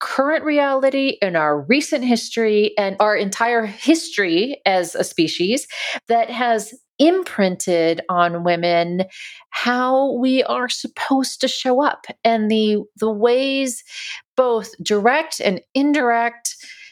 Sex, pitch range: female, 205-270 Hz